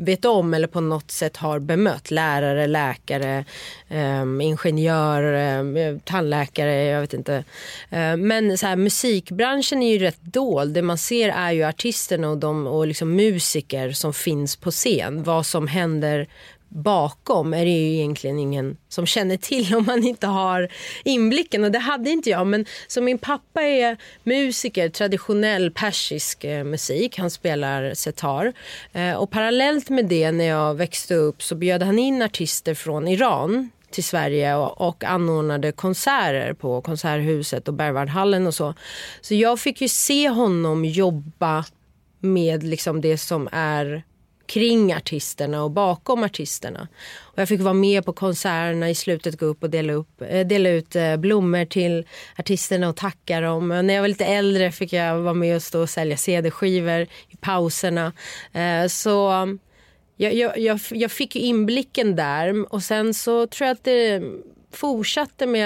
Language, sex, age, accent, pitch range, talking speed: Swedish, female, 30-49, native, 155-210 Hz, 155 wpm